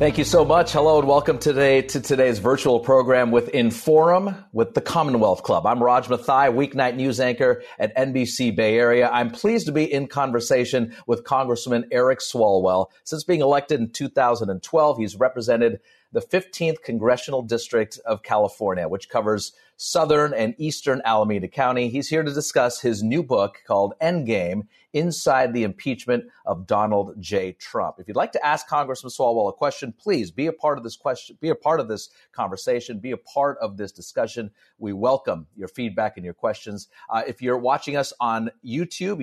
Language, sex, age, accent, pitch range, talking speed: English, male, 40-59, American, 115-150 Hz, 175 wpm